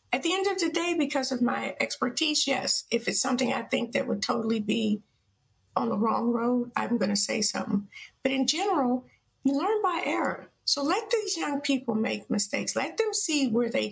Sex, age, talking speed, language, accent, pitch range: female, 50-69, 205 wpm, English, American, 230-295 Hz